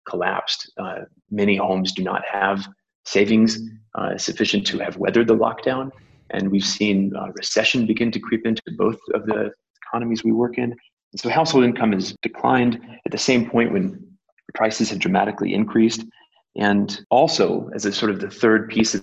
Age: 30-49